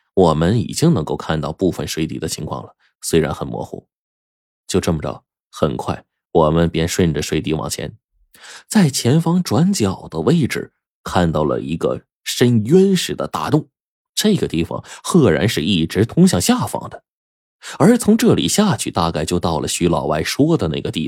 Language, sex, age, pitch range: Chinese, male, 20-39, 85-135 Hz